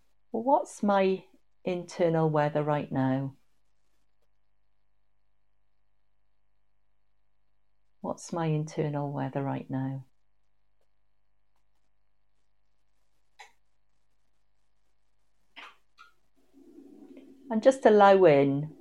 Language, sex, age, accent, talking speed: English, female, 40-59, British, 55 wpm